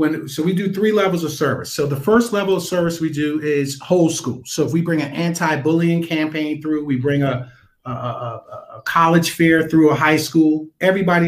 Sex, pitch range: male, 135-170 Hz